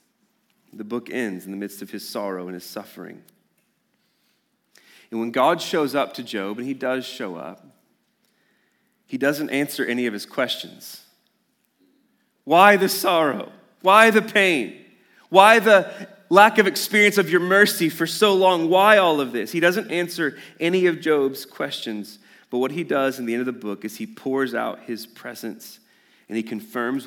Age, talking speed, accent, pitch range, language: 30-49, 175 wpm, American, 110-165 Hz, English